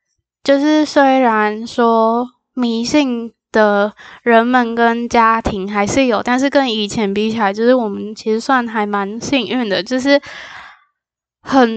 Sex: female